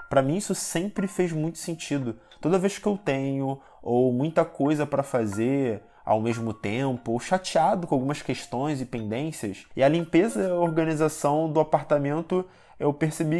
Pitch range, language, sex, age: 115-145 Hz, Portuguese, male, 20-39